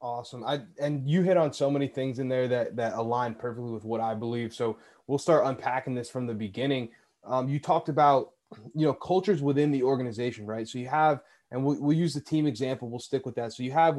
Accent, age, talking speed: American, 20-39, 225 wpm